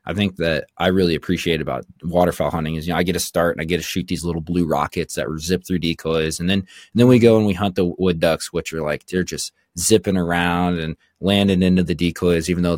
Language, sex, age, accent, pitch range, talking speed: English, male, 20-39, American, 80-95 Hz, 265 wpm